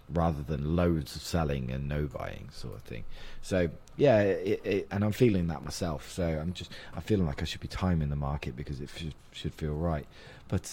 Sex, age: male, 20-39